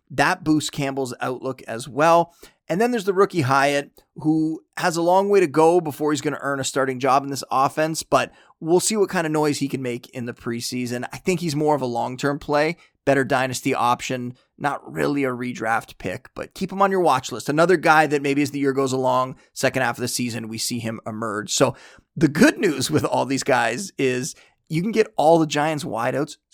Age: 30-49